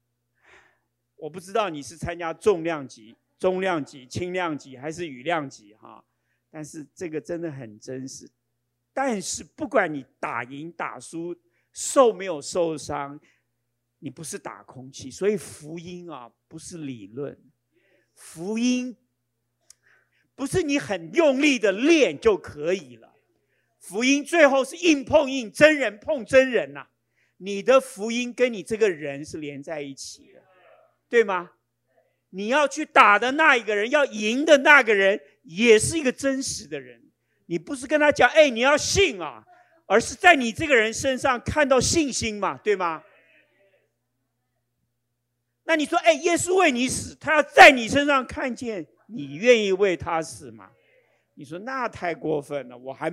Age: 50-69